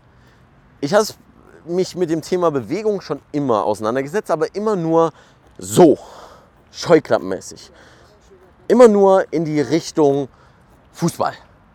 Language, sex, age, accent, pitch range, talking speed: German, male, 30-49, German, 110-155 Hz, 105 wpm